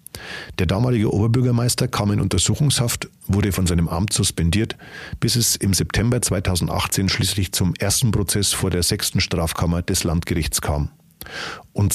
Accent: German